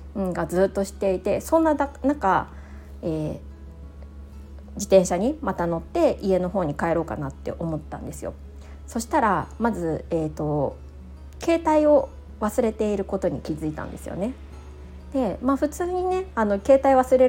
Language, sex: Japanese, female